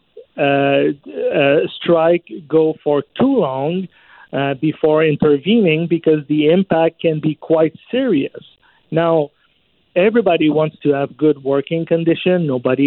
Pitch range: 145-170 Hz